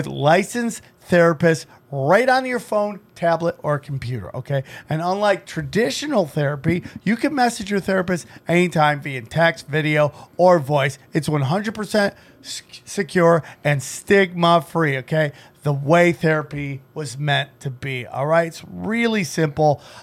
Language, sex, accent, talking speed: English, male, American, 130 wpm